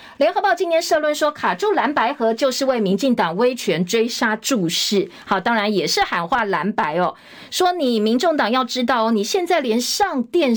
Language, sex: Chinese, female